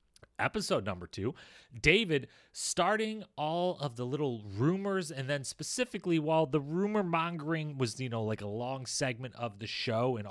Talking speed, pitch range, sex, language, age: 165 wpm, 110-140 Hz, male, English, 30-49